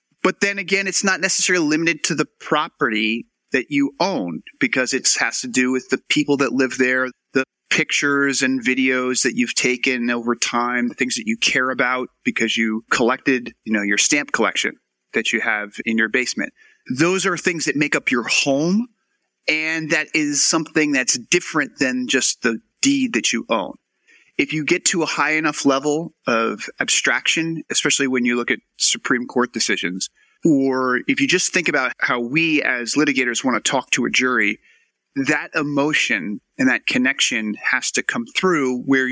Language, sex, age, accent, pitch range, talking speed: English, male, 30-49, American, 125-175 Hz, 180 wpm